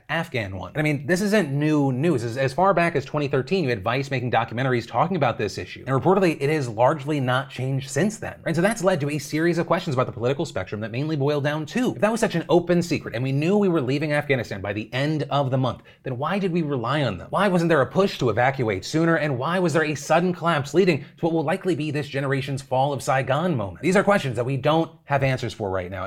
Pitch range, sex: 115-150 Hz, male